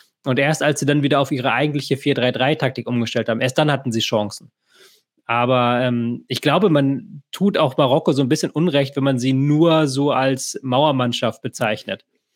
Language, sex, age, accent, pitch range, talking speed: German, male, 20-39, German, 130-155 Hz, 180 wpm